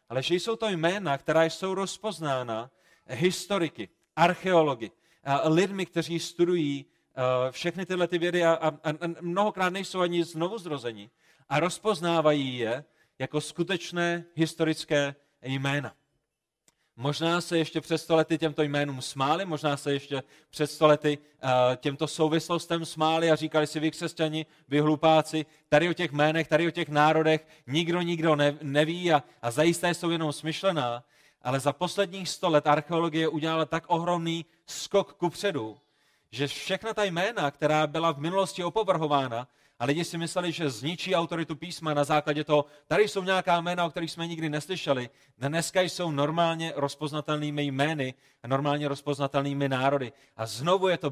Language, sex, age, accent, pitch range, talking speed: Czech, male, 30-49, native, 140-170 Hz, 140 wpm